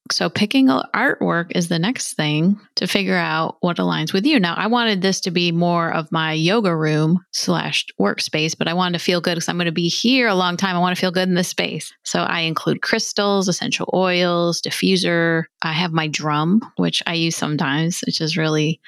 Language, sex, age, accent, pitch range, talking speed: English, female, 30-49, American, 160-200 Hz, 215 wpm